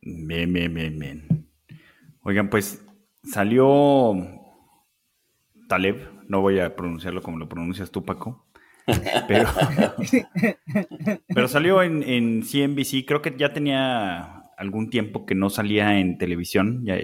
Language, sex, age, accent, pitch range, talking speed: Spanish, male, 30-49, Mexican, 95-125 Hz, 125 wpm